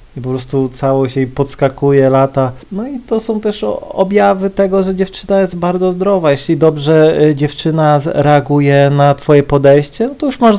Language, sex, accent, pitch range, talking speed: Polish, male, native, 120-145 Hz, 170 wpm